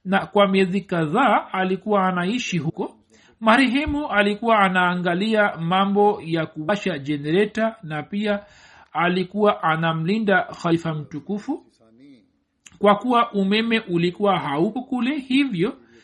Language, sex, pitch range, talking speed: Swahili, male, 180-225 Hz, 100 wpm